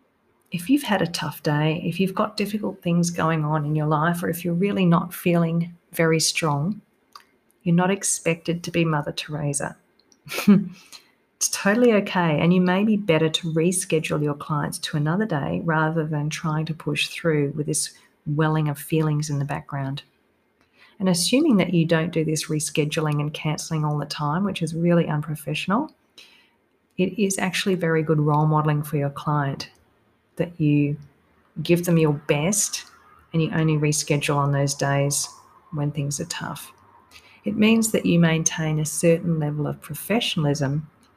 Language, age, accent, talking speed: English, 40-59, Australian, 165 wpm